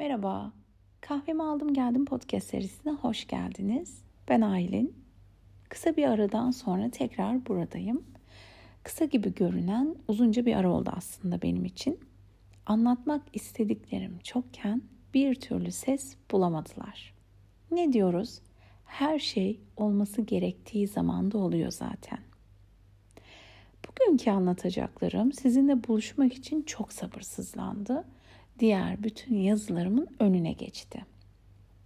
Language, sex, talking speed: Turkish, female, 100 wpm